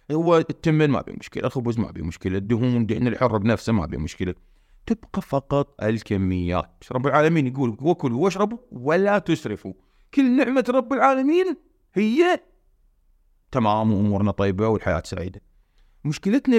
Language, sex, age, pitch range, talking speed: Arabic, male, 30-49, 110-150 Hz, 135 wpm